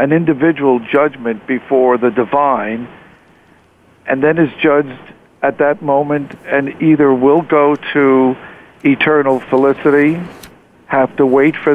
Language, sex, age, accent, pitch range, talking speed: English, male, 60-79, American, 125-145 Hz, 125 wpm